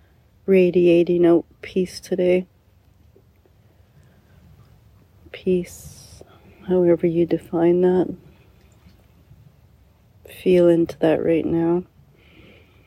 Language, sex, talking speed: English, female, 65 wpm